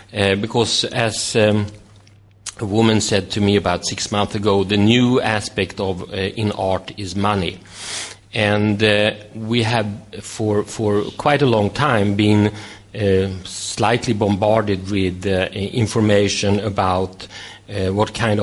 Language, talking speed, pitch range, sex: English, 140 wpm, 95-110 Hz, male